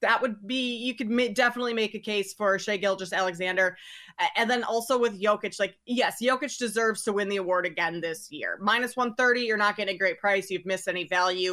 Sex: female